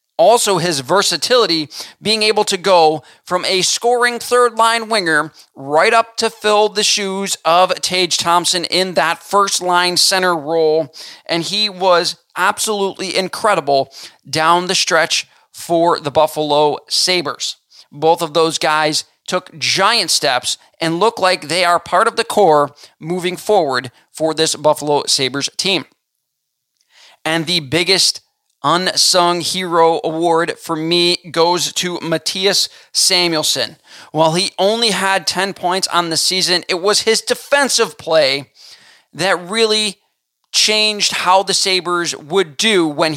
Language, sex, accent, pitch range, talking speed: English, male, American, 160-200 Hz, 135 wpm